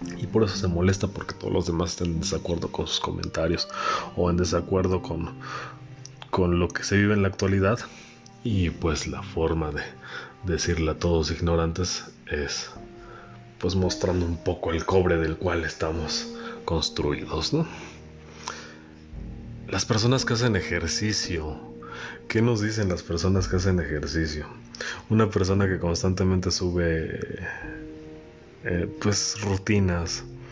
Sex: male